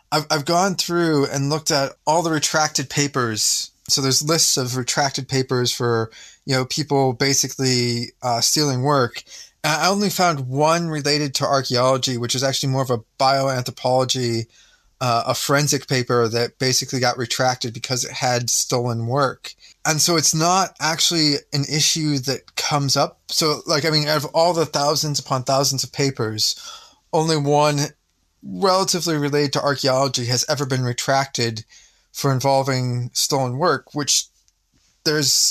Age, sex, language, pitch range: 20-39, male, English, 130-150 Hz